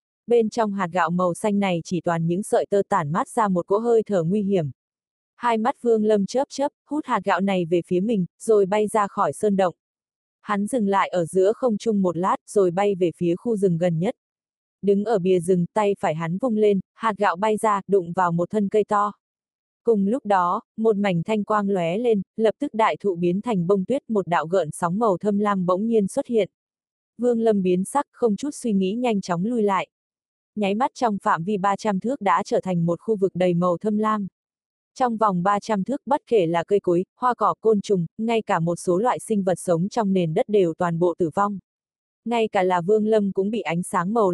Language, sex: Vietnamese, female